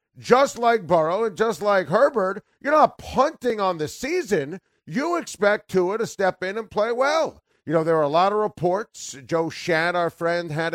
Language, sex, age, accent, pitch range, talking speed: English, male, 40-59, American, 145-205 Hz, 195 wpm